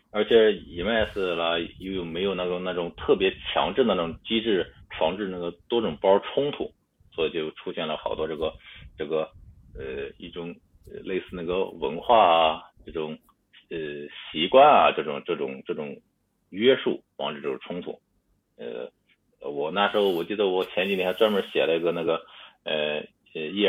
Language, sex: Chinese, male